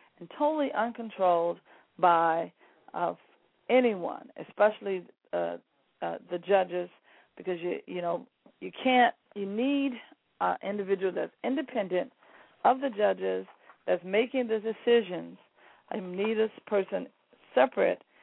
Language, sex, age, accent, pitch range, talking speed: English, female, 50-69, American, 180-245 Hz, 120 wpm